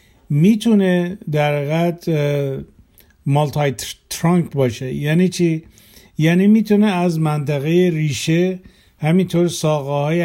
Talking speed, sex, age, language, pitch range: 95 wpm, male, 50-69, Persian, 140-165 Hz